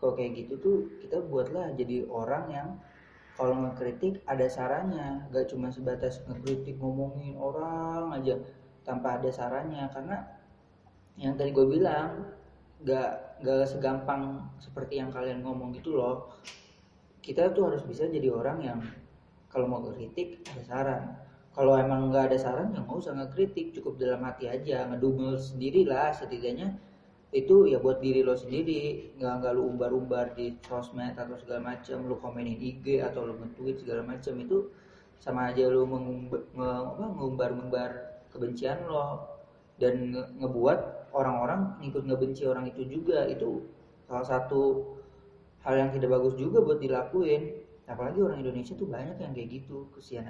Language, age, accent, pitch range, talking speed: Indonesian, 20-39, native, 125-140 Hz, 150 wpm